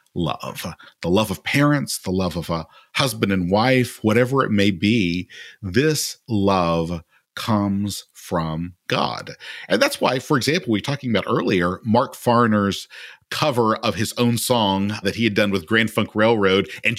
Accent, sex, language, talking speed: American, male, English, 165 wpm